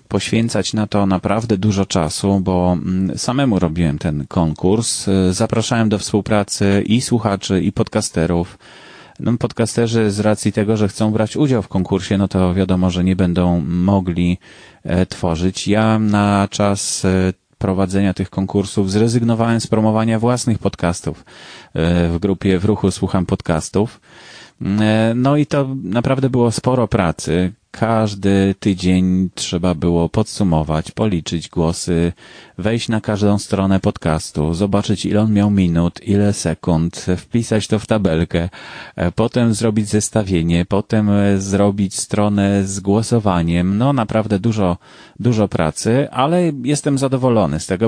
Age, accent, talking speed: 30-49, Polish, 125 wpm